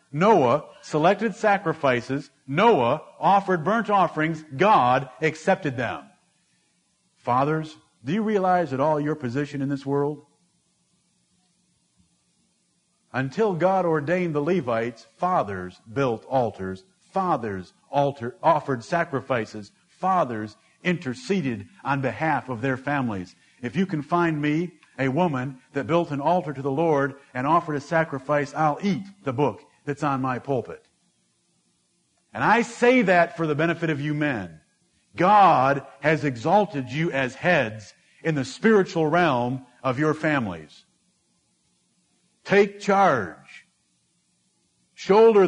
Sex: male